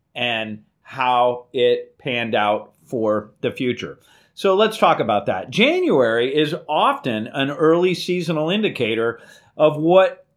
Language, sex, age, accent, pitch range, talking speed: English, male, 40-59, American, 130-180 Hz, 125 wpm